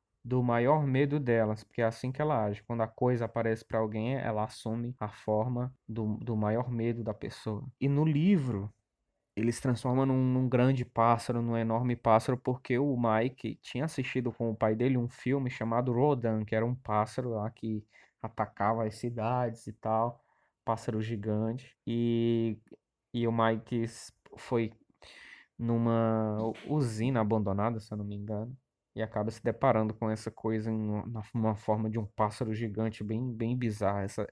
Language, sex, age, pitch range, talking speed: Portuguese, male, 20-39, 110-125 Hz, 170 wpm